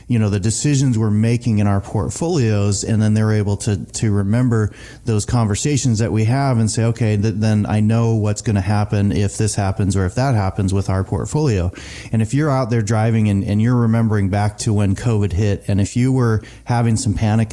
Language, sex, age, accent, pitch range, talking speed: English, male, 30-49, American, 100-120 Hz, 215 wpm